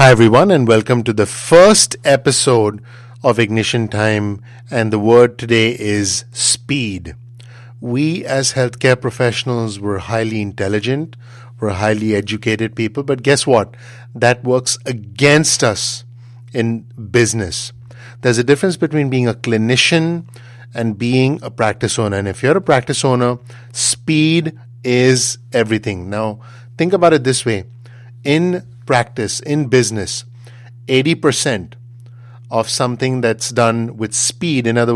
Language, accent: English, Indian